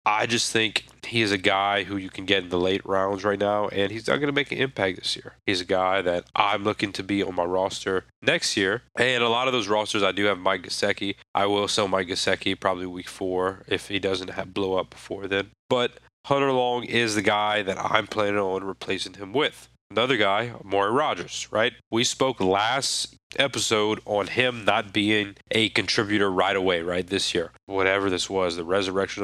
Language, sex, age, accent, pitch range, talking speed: English, male, 30-49, American, 95-115 Hz, 215 wpm